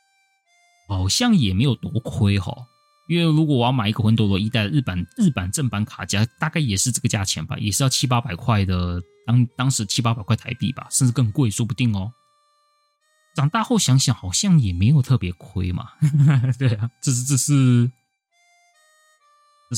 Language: Chinese